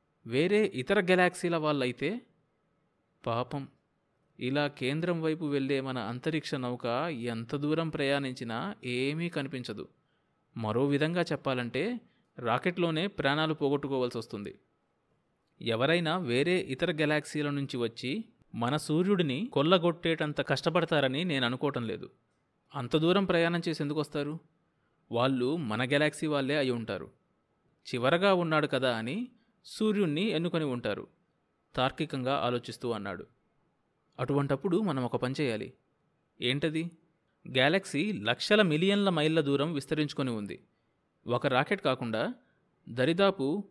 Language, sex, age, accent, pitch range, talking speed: Telugu, male, 20-39, native, 130-165 Hz, 105 wpm